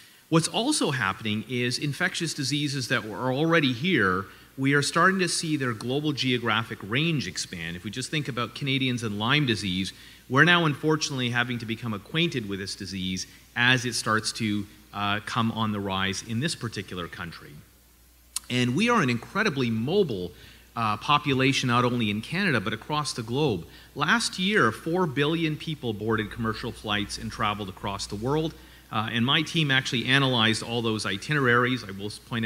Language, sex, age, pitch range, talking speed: English, male, 30-49, 110-150 Hz, 170 wpm